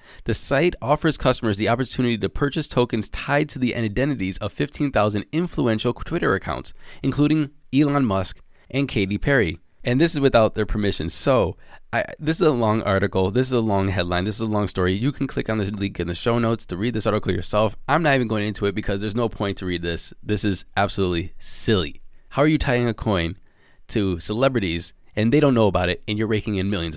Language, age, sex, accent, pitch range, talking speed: English, 20-39, male, American, 95-135 Hz, 215 wpm